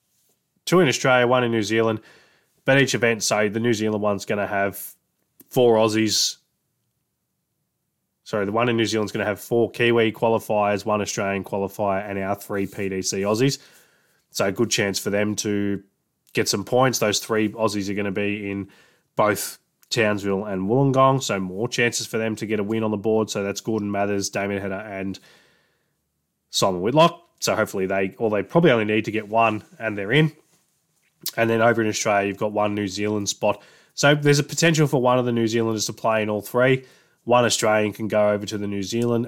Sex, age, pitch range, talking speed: male, 20-39, 100-120 Hz, 205 wpm